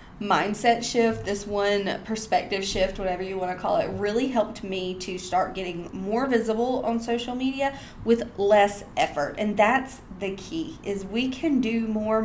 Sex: female